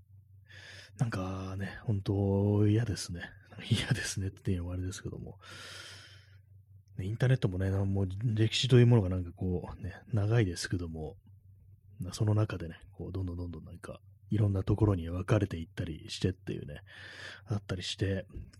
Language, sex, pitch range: Japanese, male, 95-115 Hz